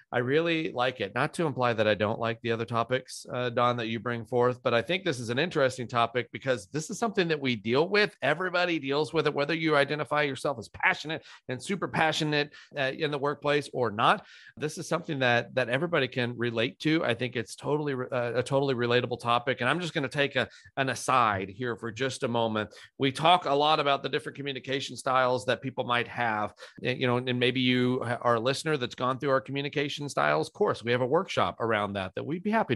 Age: 40-59